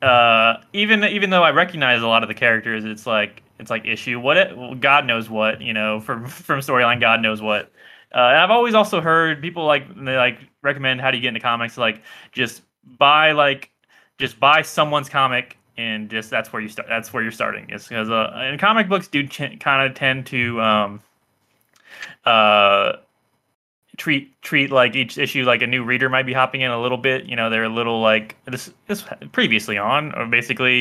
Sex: male